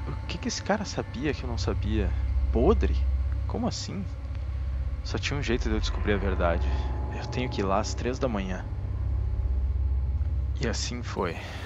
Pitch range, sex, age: 75-100 Hz, male, 20-39